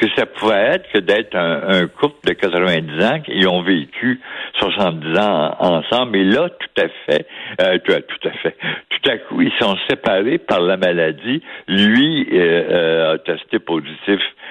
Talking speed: 180 wpm